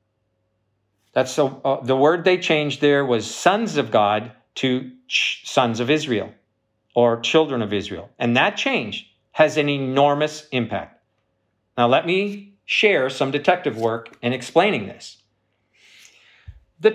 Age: 50-69